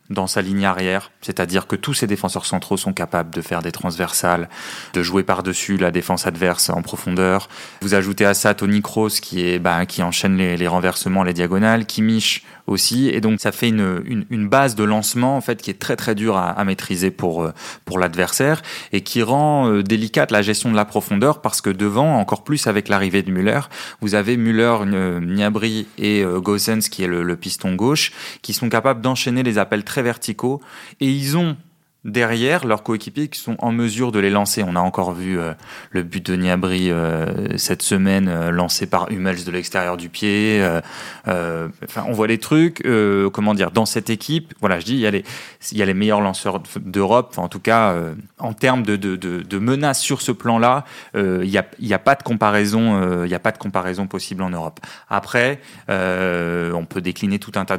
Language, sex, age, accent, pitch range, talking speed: French, male, 20-39, French, 95-115 Hz, 210 wpm